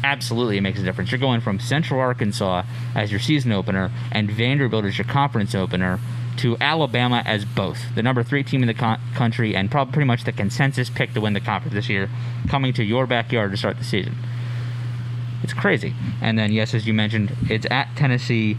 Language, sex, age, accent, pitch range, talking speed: English, male, 20-39, American, 110-125 Hz, 205 wpm